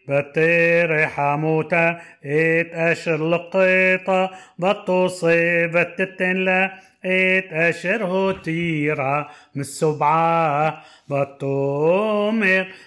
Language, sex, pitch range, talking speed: Hebrew, male, 165-205 Hz, 45 wpm